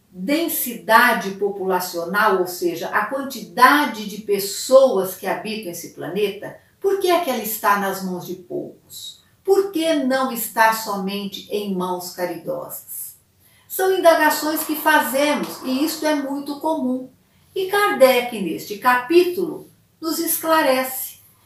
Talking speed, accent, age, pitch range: 125 wpm, Brazilian, 50-69, 205-290 Hz